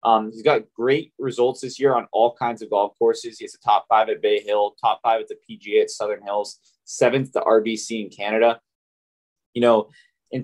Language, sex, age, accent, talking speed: English, male, 20-39, American, 215 wpm